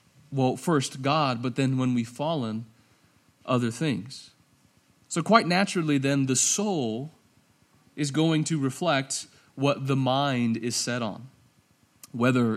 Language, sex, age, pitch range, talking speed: English, male, 30-49, 125-175 Hz, 130 wpm